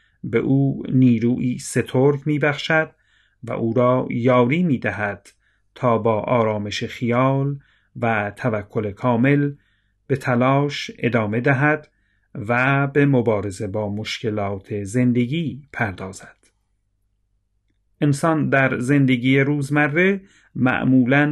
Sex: male